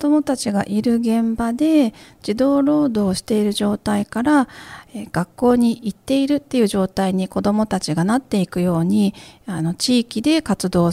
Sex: female